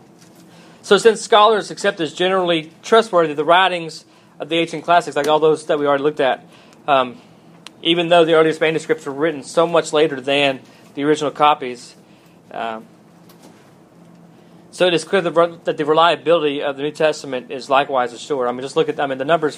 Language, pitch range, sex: English, 135-170 Hz, male